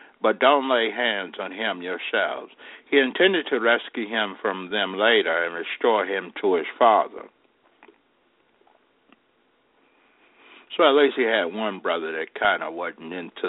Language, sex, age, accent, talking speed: English, male, 60-79, American, 145 wpm